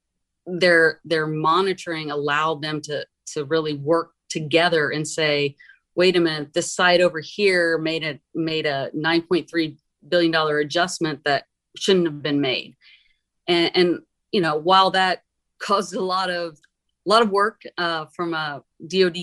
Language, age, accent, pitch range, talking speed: English, 30-49, American, 150-180 Hz, 155 wpm